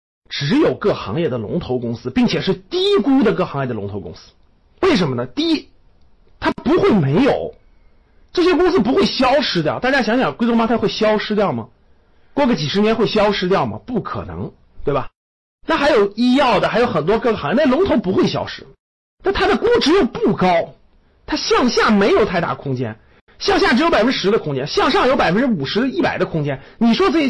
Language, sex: Chinese, male